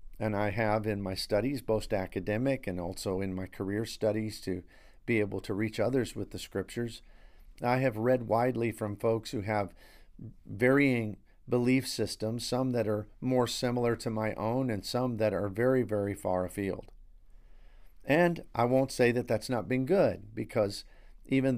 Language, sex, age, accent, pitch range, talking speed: English, male, 50-69, American, 100-125 Hz, 170 wpm